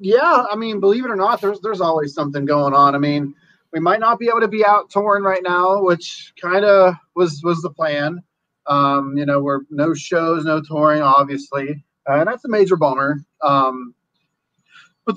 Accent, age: American, 30-49